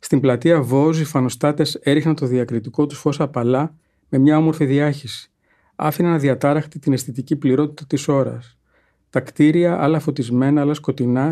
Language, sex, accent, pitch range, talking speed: Greek, male, native, 135-155 Hz, 150 wpm